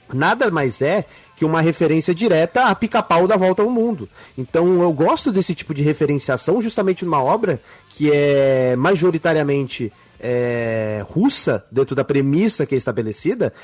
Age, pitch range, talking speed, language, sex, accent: 30-49, 135-200 Hz, 150 wpm, Portuguese, male, Brazilian